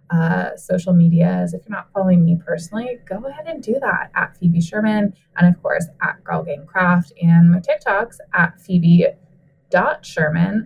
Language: English